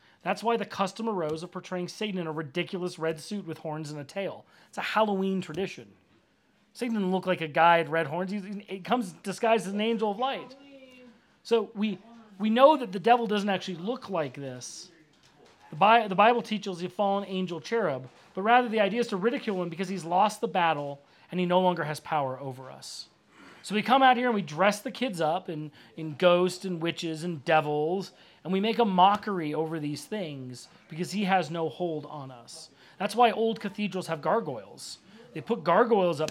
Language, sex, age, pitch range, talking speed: English, male, 40-59, 165-210 Hz, 210 wpm